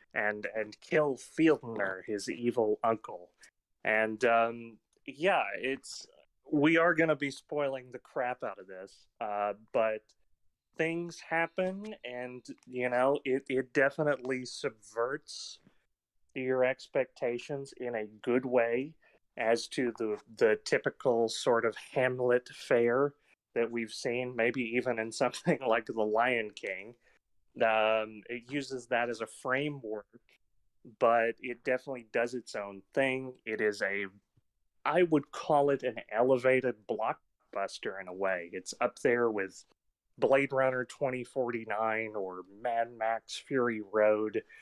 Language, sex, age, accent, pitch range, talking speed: English, male, 30-49, American, 110-135 Hz, 130 wpm